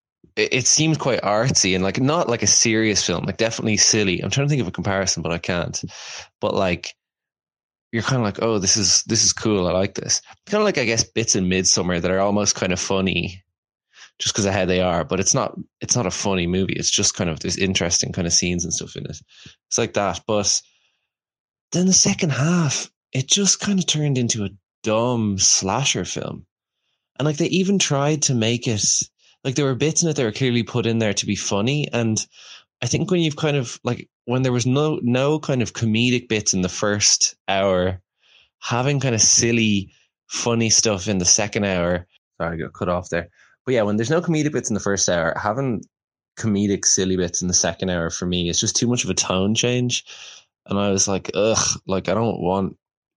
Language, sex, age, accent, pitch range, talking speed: English, male, 20-39, Irish, 95-130 Hz, 220 wpm